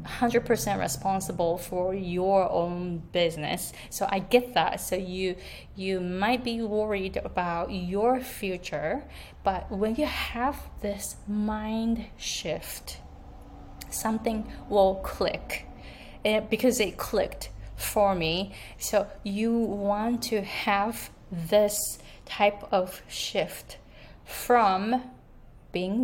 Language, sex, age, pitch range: Japanese, female, 20-39, 185-230 Hz